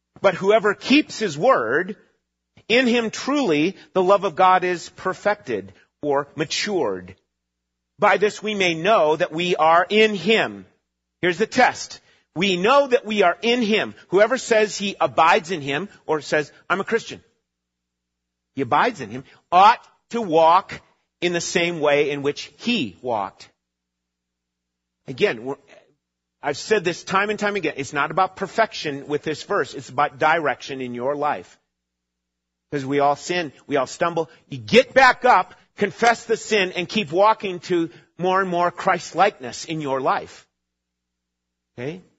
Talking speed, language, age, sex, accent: 155 wpm, English, 40-59, male, American